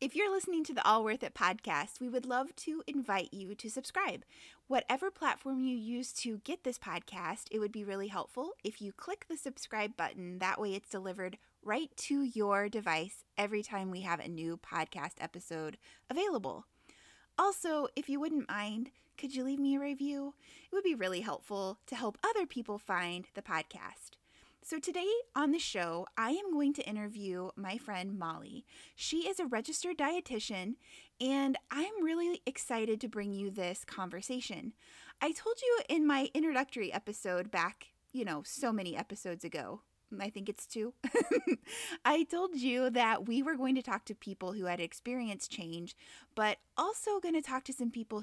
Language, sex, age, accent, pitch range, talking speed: English, female, 20-39, American, 200-280 Hz, 180 wpm